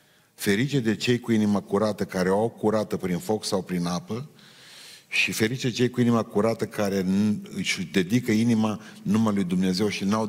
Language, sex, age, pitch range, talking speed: Romanian, male, 50-69, 100-130 Hz, 180 wpm